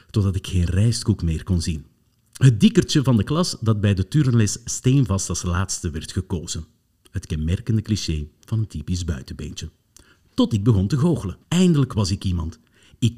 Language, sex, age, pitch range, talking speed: Dutch, male, 50-69, 95-130 Hz, 175 wpm